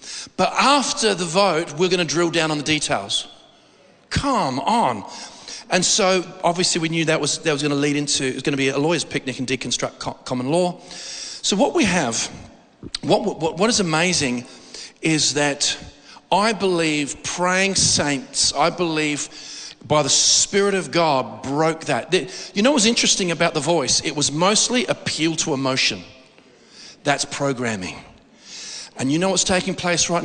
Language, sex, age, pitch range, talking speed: English, male, 40-59, 145-195 Hz, 165 wpm